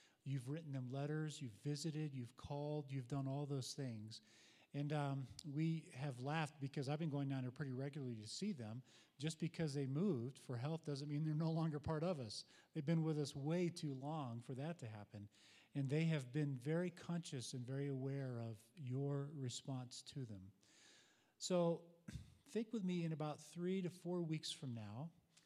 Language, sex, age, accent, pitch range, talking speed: English, male, 40-59, American, 125-150 Hz, 190 wpm